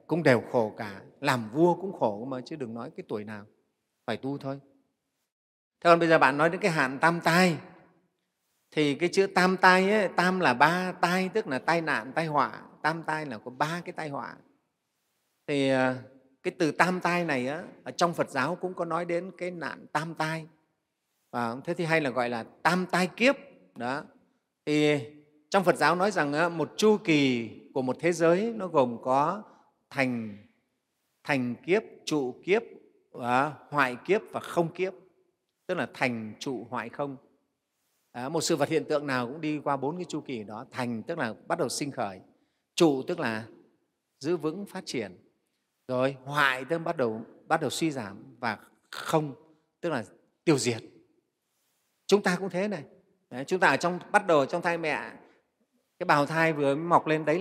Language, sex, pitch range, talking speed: Vietnamese, male, 135-180 Hz, 190 wpm